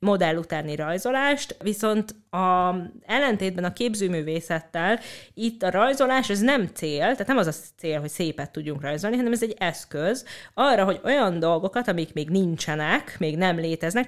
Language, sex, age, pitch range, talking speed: Hungarian, female, 30-49, 165-225 Hz, 160 wpm